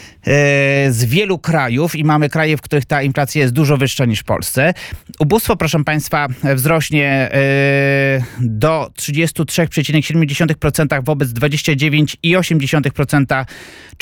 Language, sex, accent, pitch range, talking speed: Polish, male, native, 140-170 Hz, 105 wpm